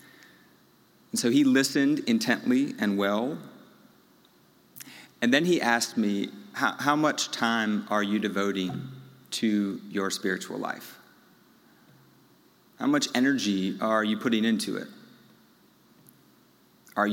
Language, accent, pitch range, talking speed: English, American, 105-125 Hz, 110 wpm